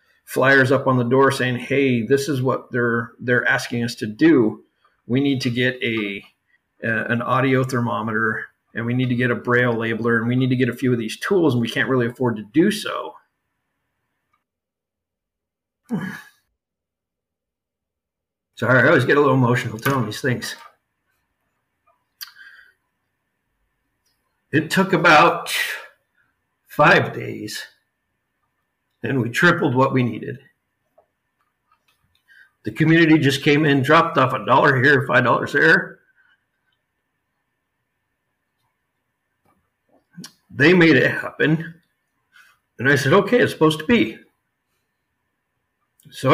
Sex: male